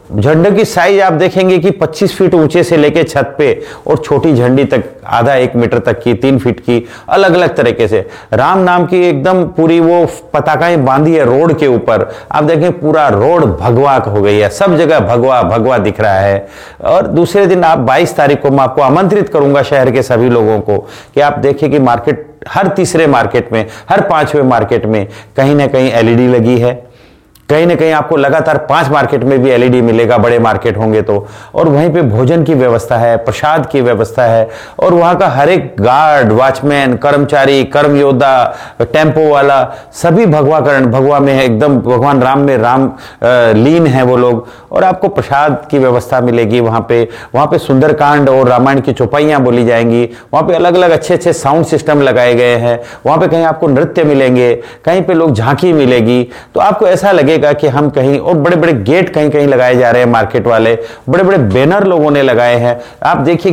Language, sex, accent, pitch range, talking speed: Gujarati, male, native, 120-160 Hz, 200 wpm